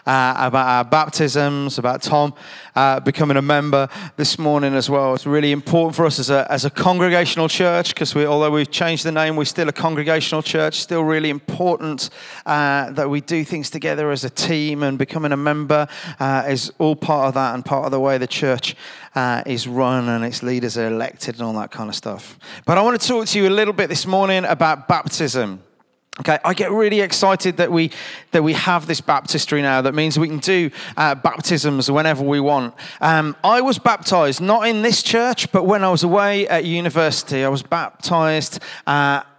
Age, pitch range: 30-49, 140-180 Hz